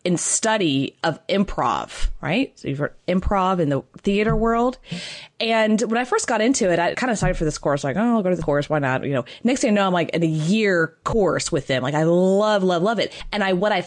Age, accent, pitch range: 20-39, American, 165-210 Hz